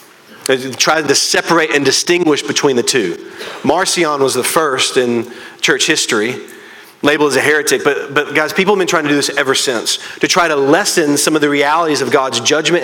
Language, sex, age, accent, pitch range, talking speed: English, male, 40-59, American, 150-240 Hz, 200 wpm